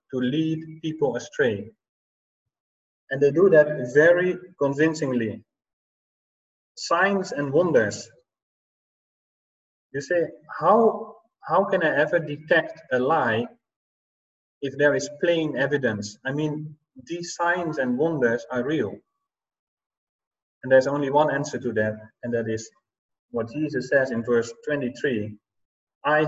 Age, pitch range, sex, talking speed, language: 30-49, 130-165 Hz, male, 120 wpm, English